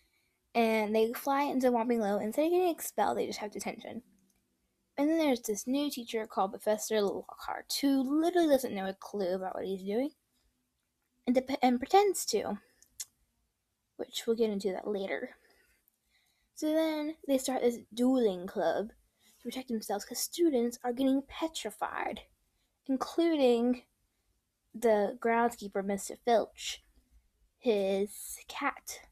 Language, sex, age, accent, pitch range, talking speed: English, female, 10-29, American, 195-255 Hz, 135 wpm